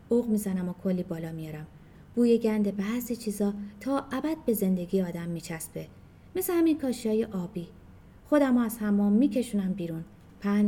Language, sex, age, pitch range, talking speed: Persian, female, 30-49, 180-260 Hz, 145 wpm